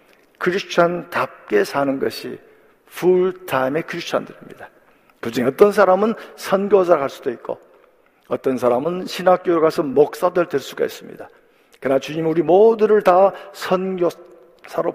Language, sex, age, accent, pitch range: Korean, male, 50-69, native, 145-205 Hz